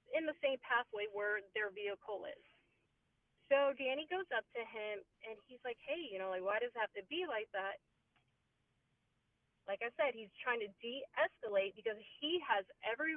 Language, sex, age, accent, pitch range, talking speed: English, female, 30-49, American, 215-295 Hz, 180 wpm